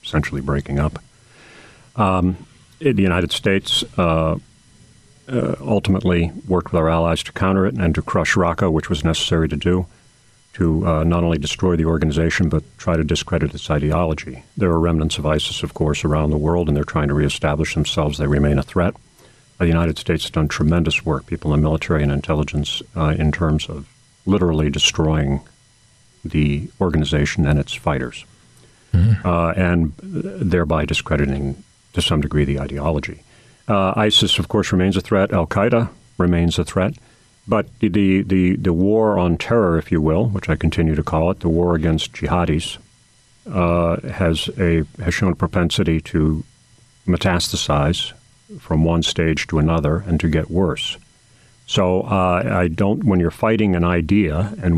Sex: male